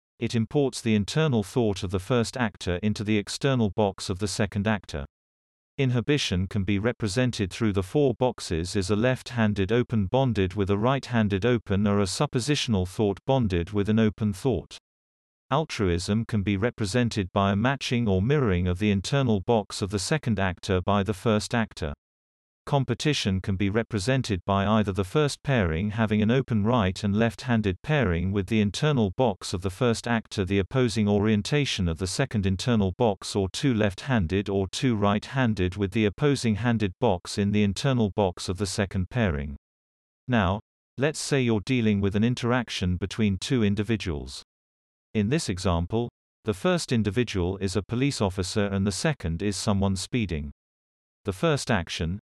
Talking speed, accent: 170 wpm, British